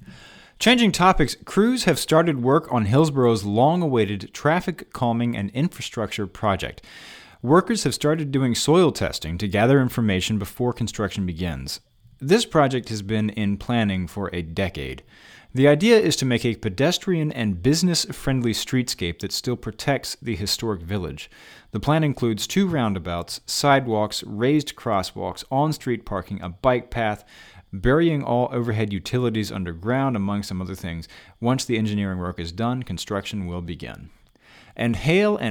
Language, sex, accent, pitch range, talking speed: English, male, American, 100-145 Hz, 140 wpm